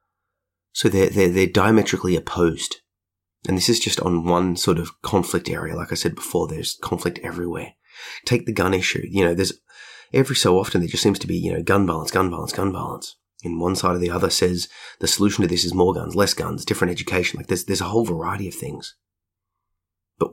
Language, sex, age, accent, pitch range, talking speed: English, male, 30-49, Australian, 85-100 Hz, 215 wpm